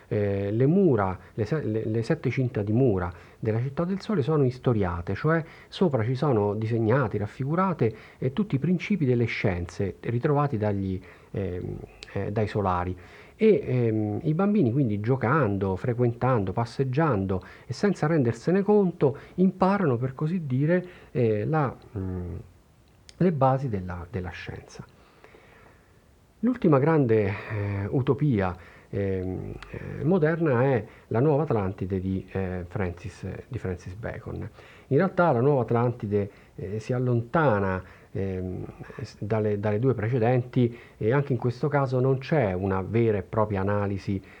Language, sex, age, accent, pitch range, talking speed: Italian, male, 50-69, native, 100-140 Hz, 130 wpm